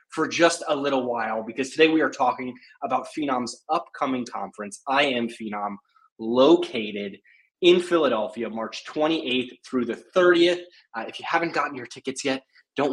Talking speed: 160 wpm